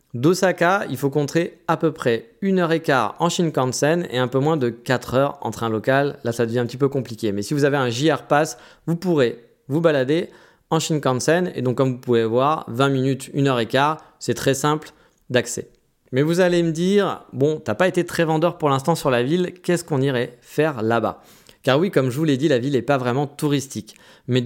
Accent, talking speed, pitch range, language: French, 235 wpm, 125-175 Hz, French